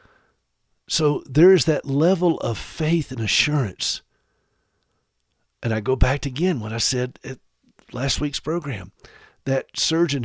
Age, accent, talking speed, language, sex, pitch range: 50-69, American, 140 wpm, English, male, 140-195 Hz